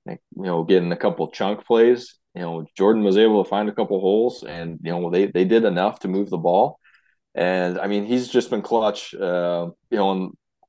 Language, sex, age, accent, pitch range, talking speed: English, male, 20-39, American, 85-95 Hz, 220 wpm